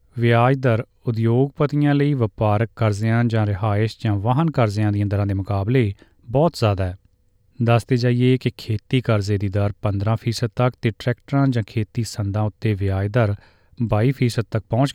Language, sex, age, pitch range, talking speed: Punjabi, male, 30-49, 105-125 Hz, 145 wpm